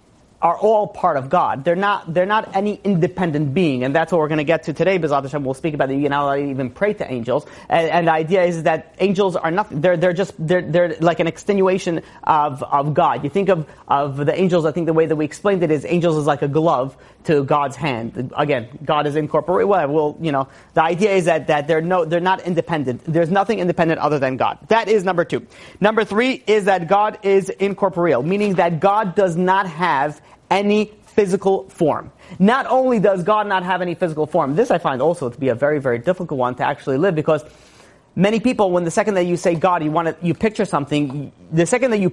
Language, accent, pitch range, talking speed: English, American, 155-195 Hz, 230 wpm